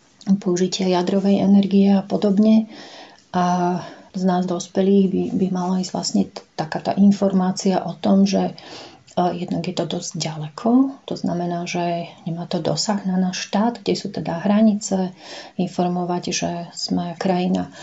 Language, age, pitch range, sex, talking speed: Slovak, 40-59, 180-200 Hz, female, 140 wpm